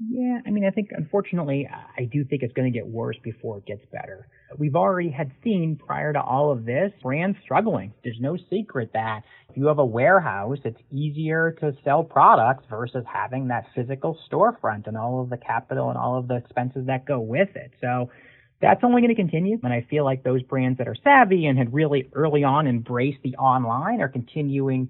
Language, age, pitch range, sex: English, 30-49, 125-160 Hz, male